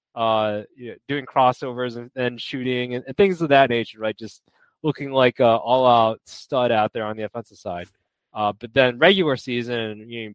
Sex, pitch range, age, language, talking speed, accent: male, 110-130 Hz, 20-39, English, 195 wpm, American